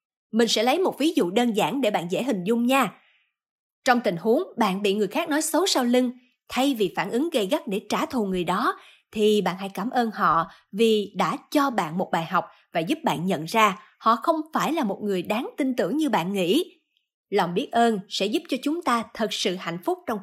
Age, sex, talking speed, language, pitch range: 20-39, female, 235 wpm, Vietnamese, 200-275 Hz